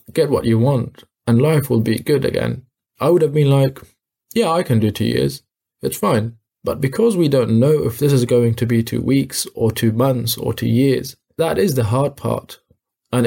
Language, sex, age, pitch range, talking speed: English, male, 20-39, 115-135 Hz, 215 wpm